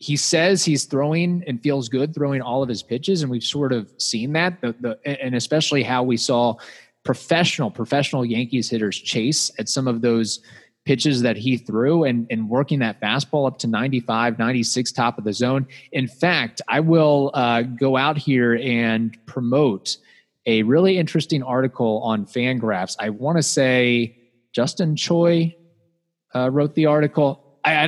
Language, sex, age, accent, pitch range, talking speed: English, male, 20-39, American, 120-145 Hz, 170 wpm